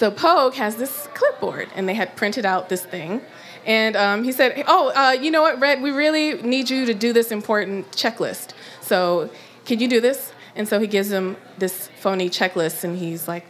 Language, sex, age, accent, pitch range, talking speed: English, female, 20-39, American, 185-255 Hz, 210 wpm